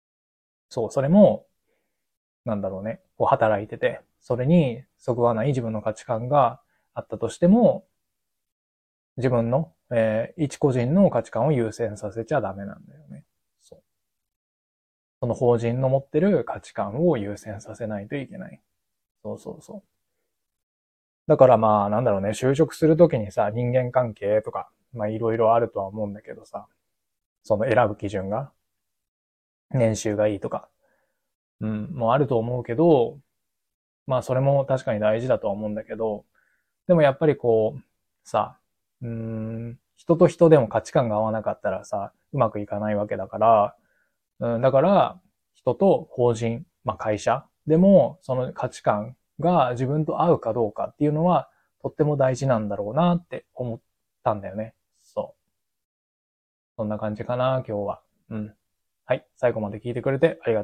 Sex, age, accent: male, 20-39, native